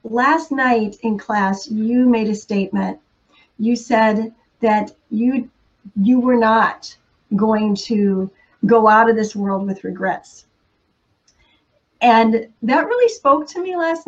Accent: American